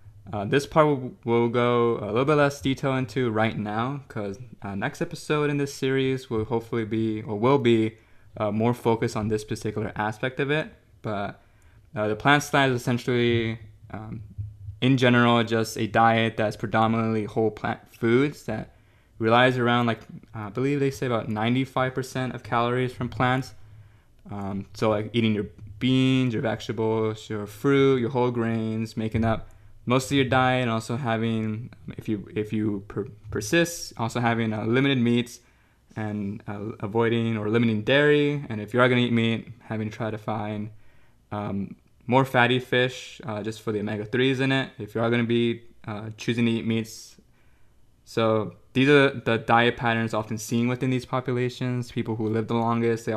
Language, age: English, 20-39